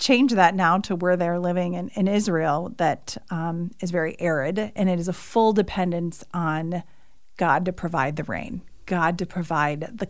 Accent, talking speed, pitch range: American, 185 wpm, 170-195 Hz